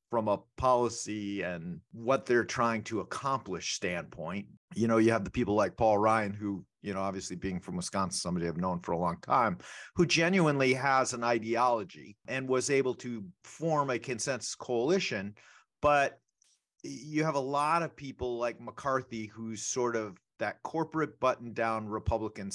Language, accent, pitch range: English, American, 110-135 Hz